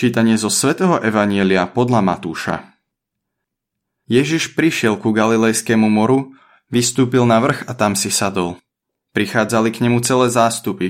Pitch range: 100-125 Hz